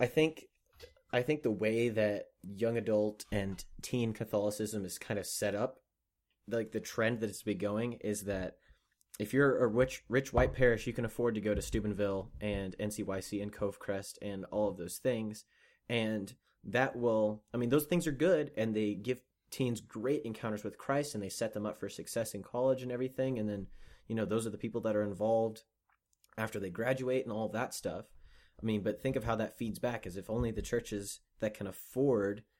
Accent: American